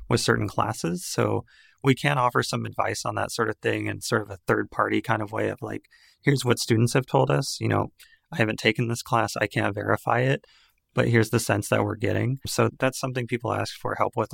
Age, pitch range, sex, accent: 30-49, 110-125 Hz, male, American